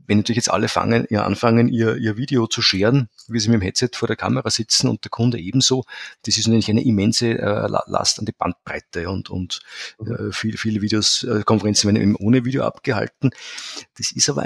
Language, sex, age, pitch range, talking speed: German, male, 50-69, 105-130 Hz, 210 wpm